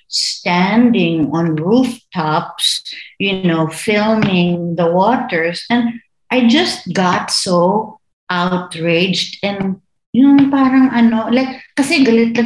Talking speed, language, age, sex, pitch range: 110 wpm, English, 60-79, female, 160-220 Hz